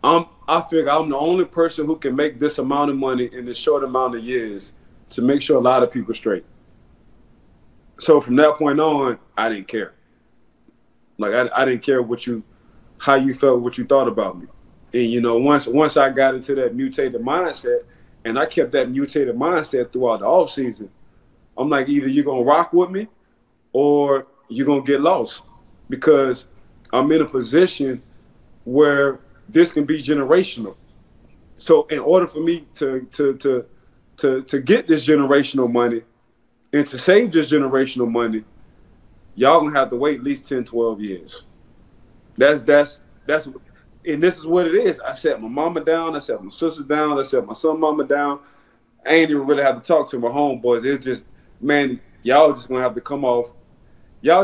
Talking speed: 190 wpm